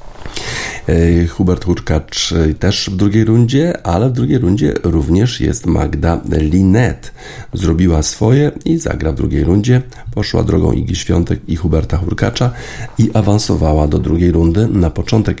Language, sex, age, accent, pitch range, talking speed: Polish, male, 50-69, native, 80-100 Hz, 135 wpm